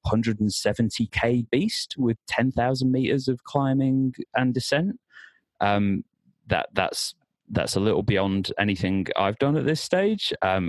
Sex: male